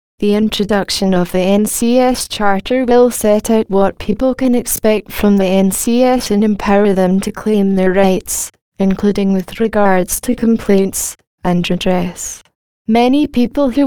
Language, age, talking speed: English, 10-29, 145 wpm